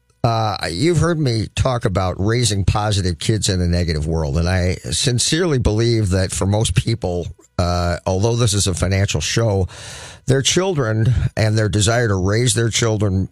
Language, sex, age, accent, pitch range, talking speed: English, male, 50-69, American, 95-120 Hz, 170 wpm